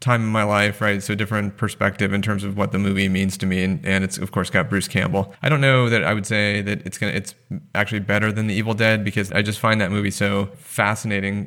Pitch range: 100-120 Hz